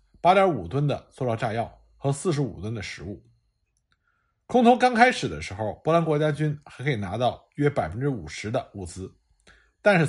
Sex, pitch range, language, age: male, 105-155 Hz, Chinese, 50-69